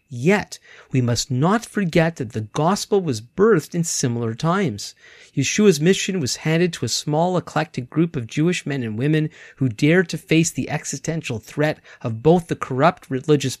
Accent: American